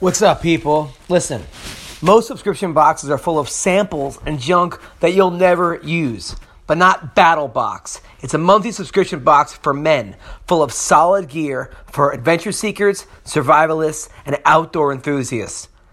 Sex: male